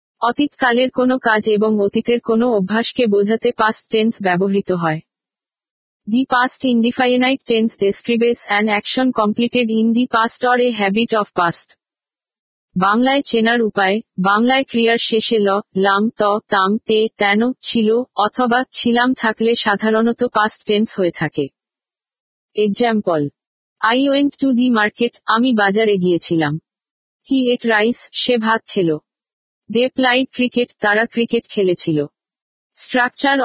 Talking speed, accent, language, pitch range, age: 85 wpm, native, Bengali, 205-245 Hz, 50-69